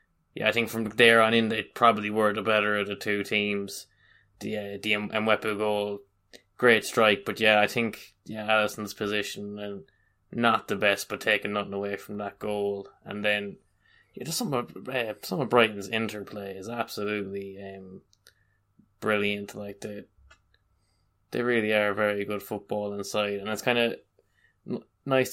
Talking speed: 180 wpm